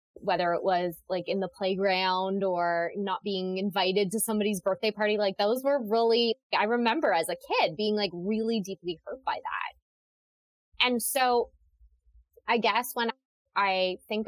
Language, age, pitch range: English, 20-39, 175-220 Hz